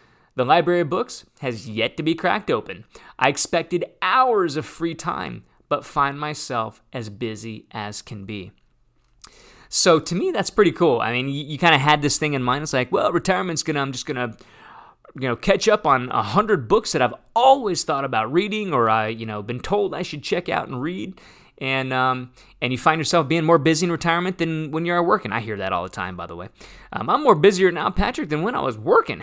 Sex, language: male, English